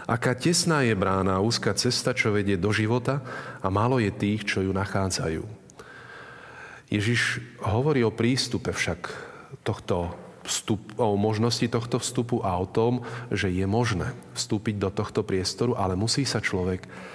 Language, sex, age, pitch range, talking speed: Slovak, male, 30-49, 95-120 Hz, 145 wpm